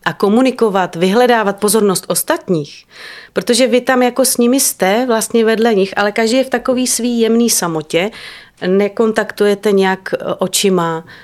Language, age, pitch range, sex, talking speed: Czech, 30-49, 185-225 Hz, female, 140 wpm